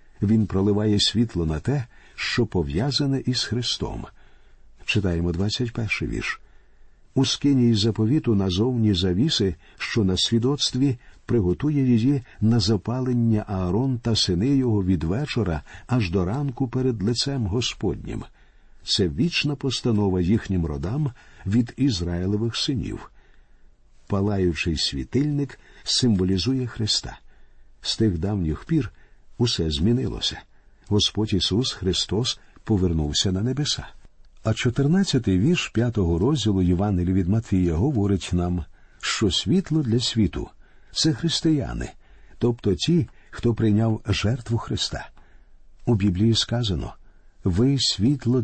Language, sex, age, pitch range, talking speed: Ukrainian, male, 50-69, 95-125 Hz, 110 wpm